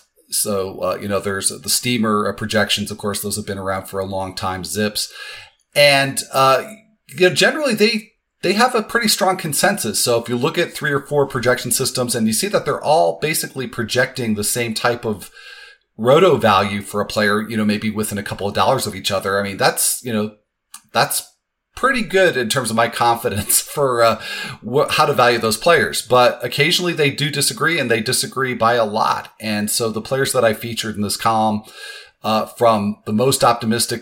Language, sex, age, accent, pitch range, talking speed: English, male, 40-59, American, 105-135 Hz, 205 wpm